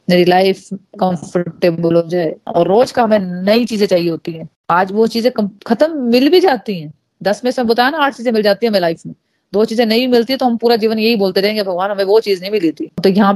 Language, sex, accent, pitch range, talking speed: Hindi, female, native, 175-225 Hz, 220 wpm